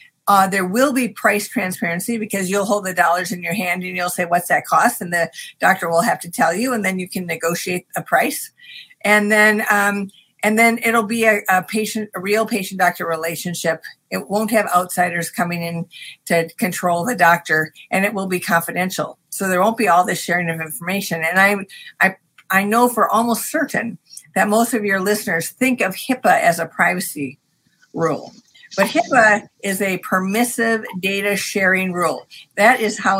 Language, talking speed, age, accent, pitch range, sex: English, 190 wpm, 50-69, American, 175-215 Hz, female